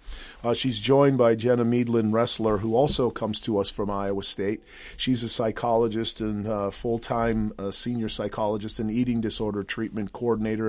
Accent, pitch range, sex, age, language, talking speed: American, 110-125 Hz, male, 40-59, English, 165 wpm